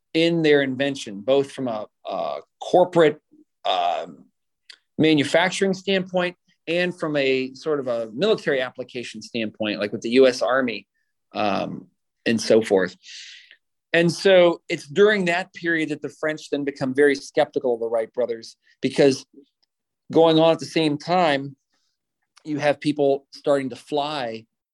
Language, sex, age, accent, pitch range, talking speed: English, male, 40-59, American, 125-155 Hz, 145 wpm